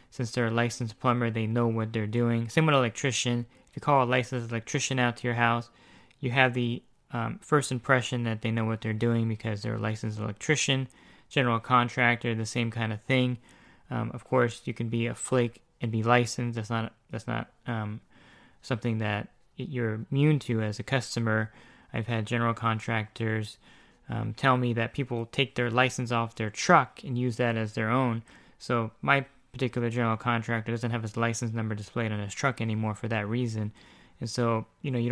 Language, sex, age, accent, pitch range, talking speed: English, male, 20-39, American, 115-125 Hz, 195 wpm